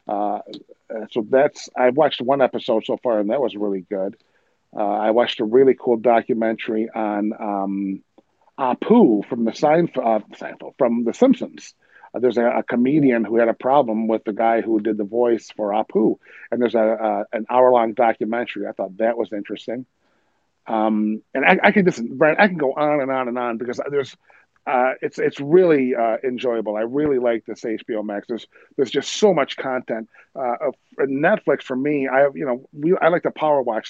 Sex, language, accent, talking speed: male, English, American, 200 wpm